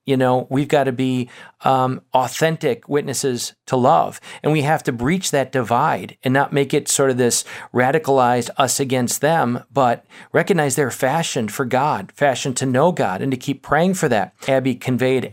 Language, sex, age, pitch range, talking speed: English, male, 40-59, 130-150 Hz, 185 wpm